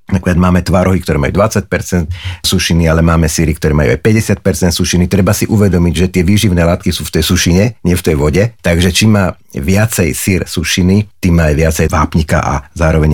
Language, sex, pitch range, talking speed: Slovak, male, 85-110 Hz, 190 wpm